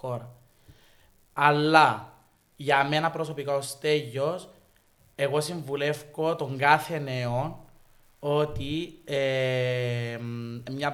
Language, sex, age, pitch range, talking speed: Greek, male, 20-39, 125-150 Hz, 70 wpm